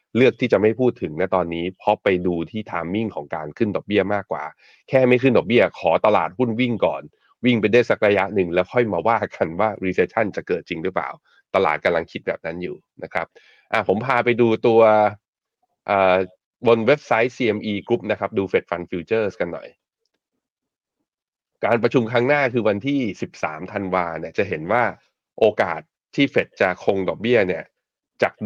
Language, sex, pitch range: Thai, male, 90-120 Hz